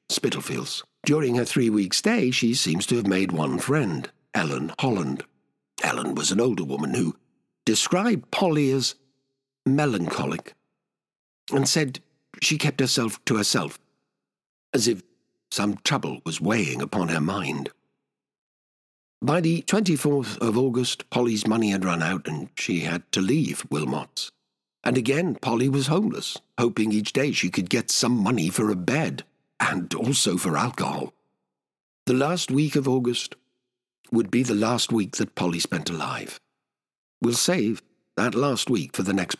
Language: English